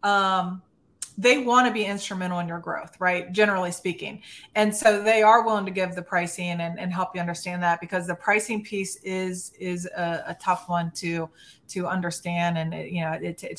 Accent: American